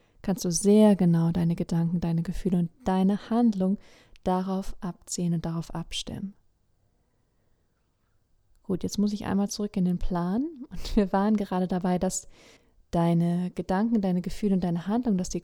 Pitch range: 180-215 Hz